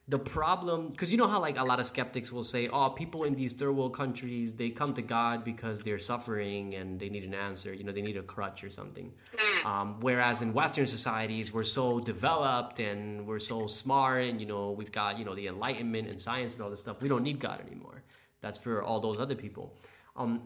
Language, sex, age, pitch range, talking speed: English, male, 20-39, 110-135 Hz, 230 wpm